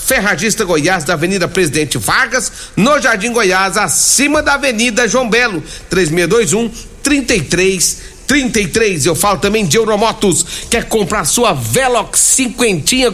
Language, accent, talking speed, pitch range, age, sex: Portuguese, Brazilian, 120 wpm, 190-255 Hz, 60-79, male